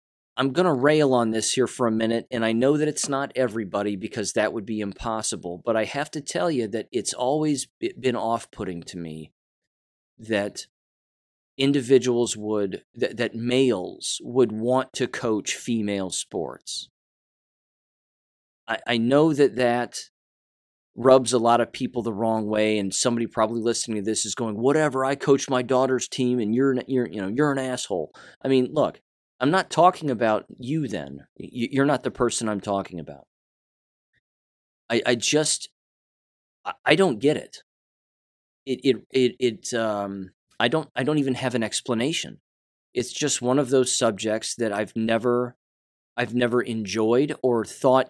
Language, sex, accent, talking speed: English, male, American, 165 wpm